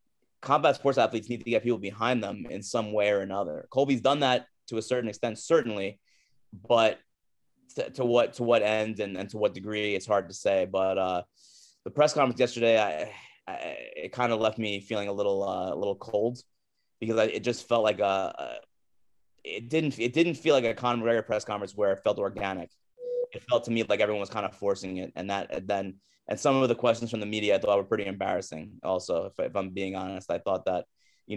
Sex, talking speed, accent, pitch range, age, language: male, 225 wpm, American, 100-120 Hz, 20-39, English